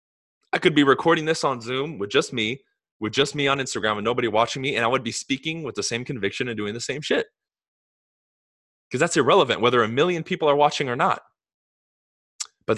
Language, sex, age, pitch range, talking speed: English, male, 20-39, 115-160 Hz, 210 wpm